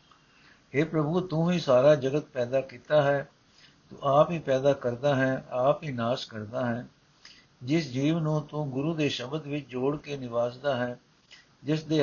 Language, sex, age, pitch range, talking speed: Punjabi, male, 60-79, 125-150 Hz, 170 wpm